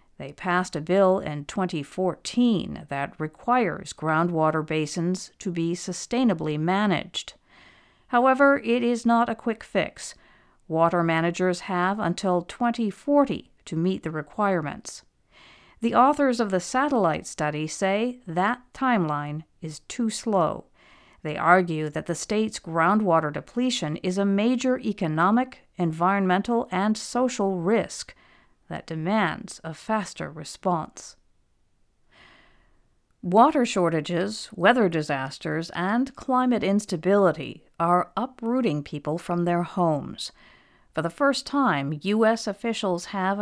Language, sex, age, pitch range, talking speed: English, female, 50-69, 160-225 Hz, 115 wpm